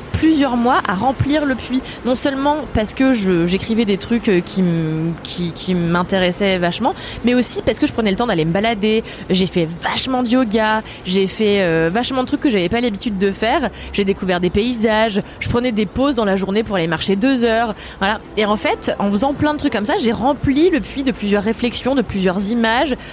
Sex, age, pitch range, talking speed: female, 20-39, 190-250 Hz, 220 wpm